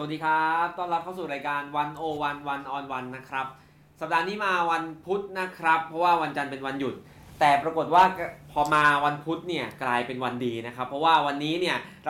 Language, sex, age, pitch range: Thai, male, 20-39, 135-180 Hz